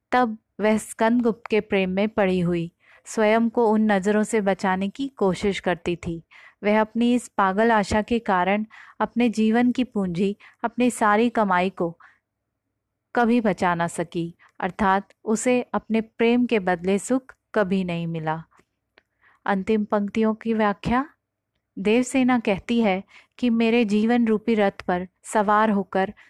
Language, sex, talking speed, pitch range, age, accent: Hindi, female, 140 wpm, 190-225 Hz, 30-49, native